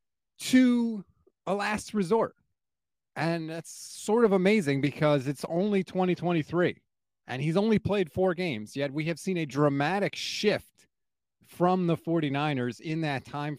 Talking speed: 140 wpm